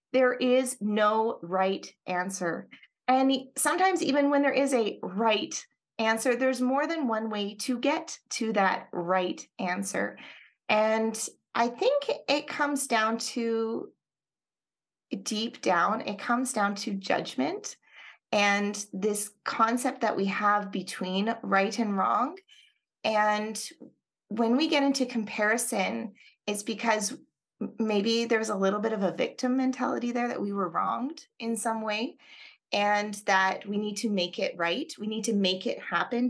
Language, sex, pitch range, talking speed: English, female, 200-260 Hz, 145 wpm